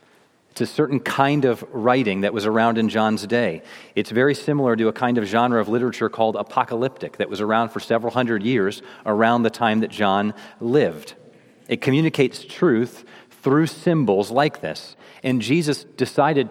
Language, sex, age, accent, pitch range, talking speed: English, male, 40-59, American, 115-140 Hz, 170 wpm